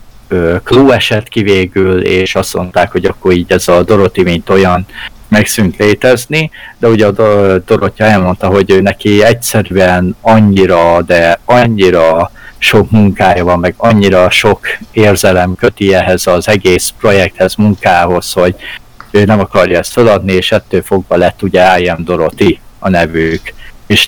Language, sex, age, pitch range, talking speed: Hungarian, male, 60-79, 90-110 Hz, 145 wpm